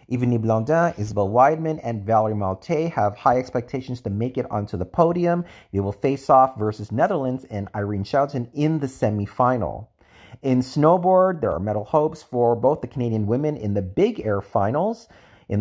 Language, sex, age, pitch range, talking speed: English, male, 40-59, 110-150 Hz, 175 wpm